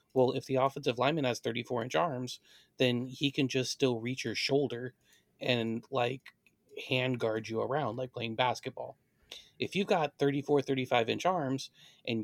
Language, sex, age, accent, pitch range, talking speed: English, male, 30-49, American, 120-140 Hz, 155 wpm